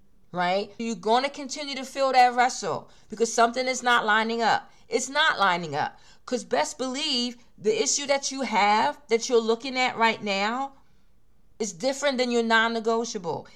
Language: English